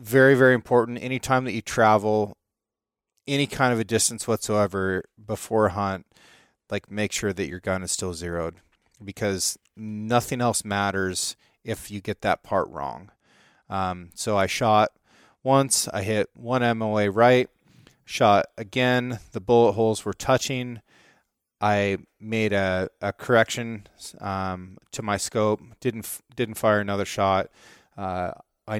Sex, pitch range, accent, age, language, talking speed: male, 95-115 Hz, American, 30-49, English, 140 wpm